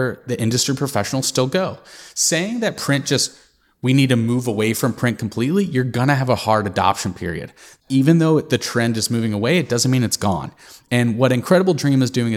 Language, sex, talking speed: English, male, 210 wpm